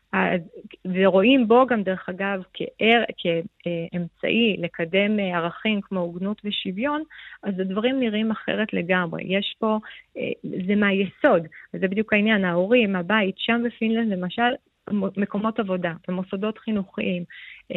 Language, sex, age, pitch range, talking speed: Hebrew, female, 30-49, 190-230 Hz, 115 wpm